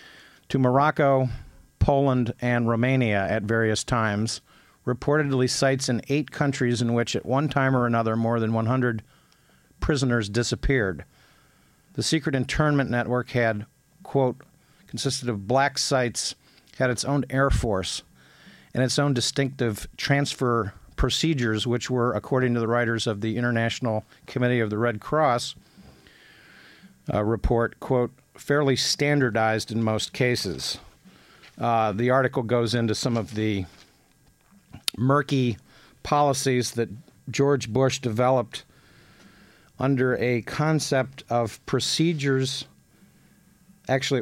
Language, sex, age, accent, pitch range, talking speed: English, male, 50-69, American, 115-135 Hz, 120 wpm